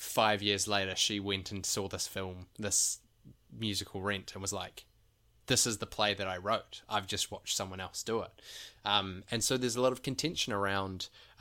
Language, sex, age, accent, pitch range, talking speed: English, male, 20-39, Australian, 95-110 Hz, 205 wpm